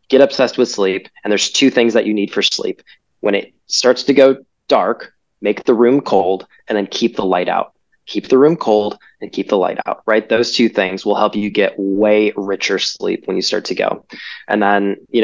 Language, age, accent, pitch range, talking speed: English, 20-39, American, 100-120 Hz, 225 wpm